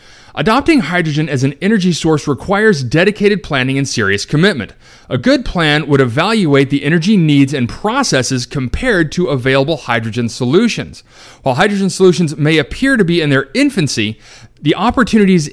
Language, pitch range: English, 135-190 Hz